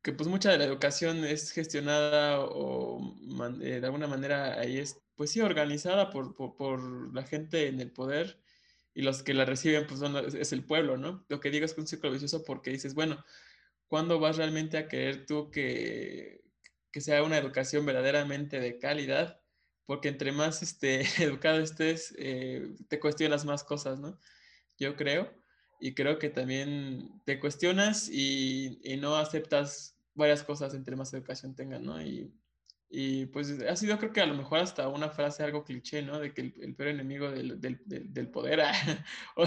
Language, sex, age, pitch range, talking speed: Spanish, male, 20-39, 135-155 Hz, 185 wpm